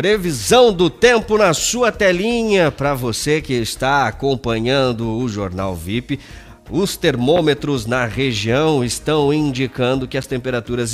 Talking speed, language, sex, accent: 125 wpm, Portuguese, male, Brazilian